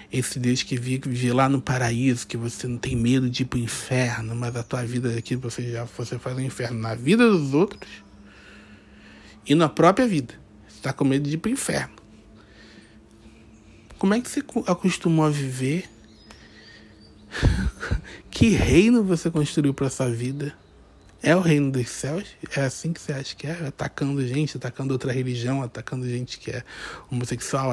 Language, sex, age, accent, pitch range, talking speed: Portuguese, male, 20-39, Brazilian, 115-160 Hz, 175 wpm